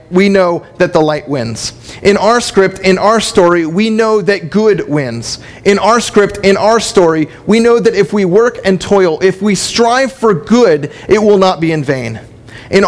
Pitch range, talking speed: 165-220 Hz, 200 wpm